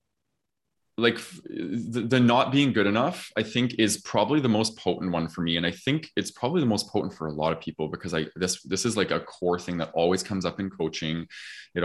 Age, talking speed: 20-39, 235 wpm